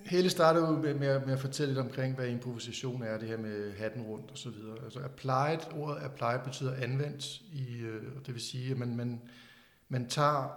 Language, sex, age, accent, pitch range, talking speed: Danish, male, 60-79, native, 120-140 Hz, 200 wpm